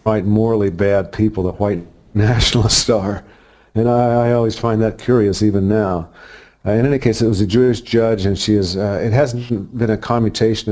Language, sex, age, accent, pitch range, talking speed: English, male, 50-69, American, 95-110 Hz, 195 wpm